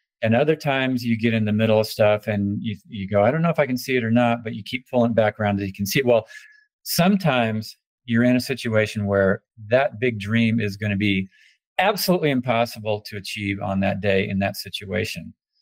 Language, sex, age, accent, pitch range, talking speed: English, male, 50-69, American, 105-125 Hz, 225 wpm